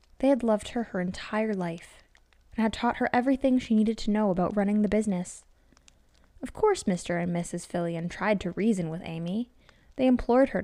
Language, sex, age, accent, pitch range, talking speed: English, female, 10-29, American, 180-225 Hz, 190 wpm